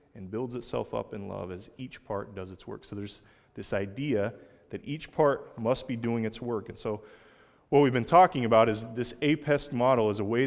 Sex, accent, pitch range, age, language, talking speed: male, American, 110-130 Hz, 20-39, English, 220 wpm